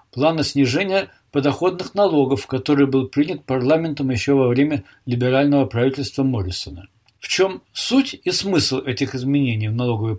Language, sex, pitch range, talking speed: Russian, male, 125-160 Hz, 135 wpm